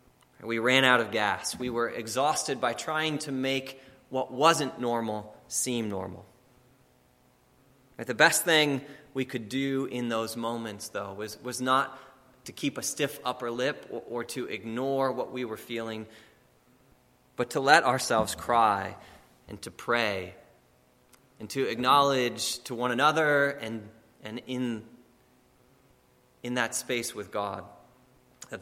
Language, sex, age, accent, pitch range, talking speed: English, male, 20-39, American, 105-145 Hz, 140 wpm